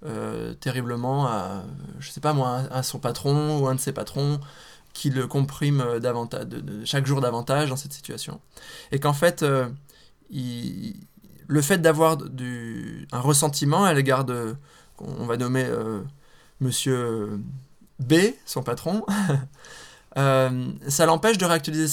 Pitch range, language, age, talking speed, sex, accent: 130-155 Hz, English, 20-39, 150 wpm, male, French